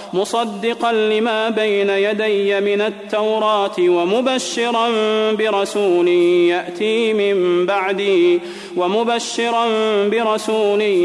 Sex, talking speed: male, 70 wpm